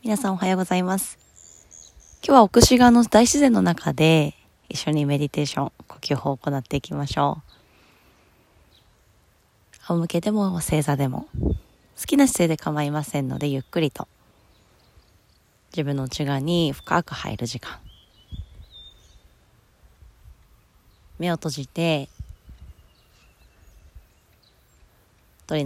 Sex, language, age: female, Japanese, 20-39